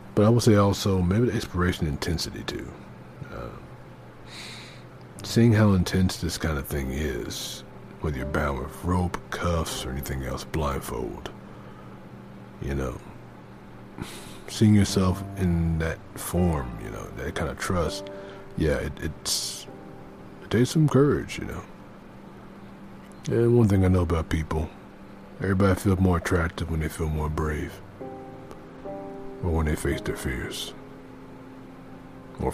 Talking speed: 135 wpm